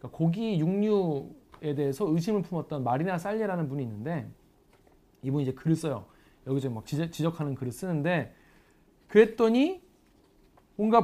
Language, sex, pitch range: Korean, male, 145-205 Hz